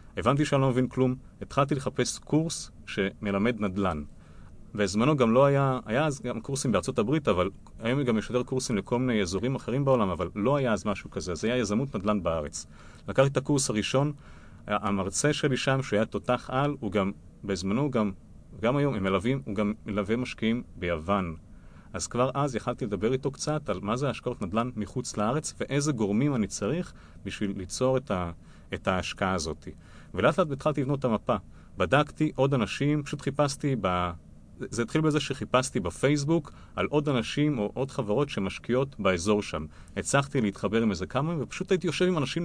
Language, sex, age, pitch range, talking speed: Hebrew, male, 40-59, 100-140 Hz, 170 wpm